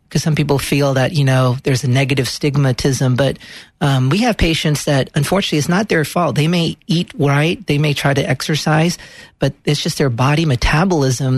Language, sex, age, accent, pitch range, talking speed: English, male, 40-59, American, 130-150 Hz, 195 wpm